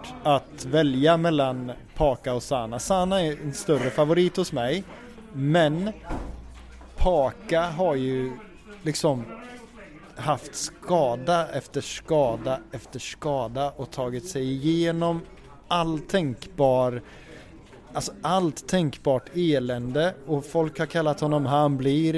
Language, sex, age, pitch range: Swedish, male, 20-39, 135-165 Hz